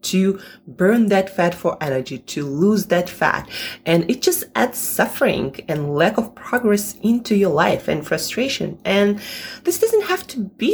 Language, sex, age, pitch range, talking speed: English, female, 20-39, 145-235 Hz, 170 wpm